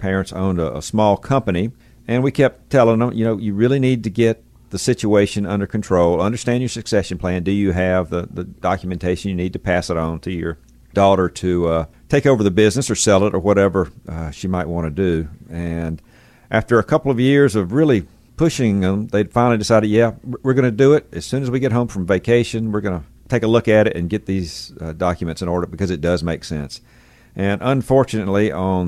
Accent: American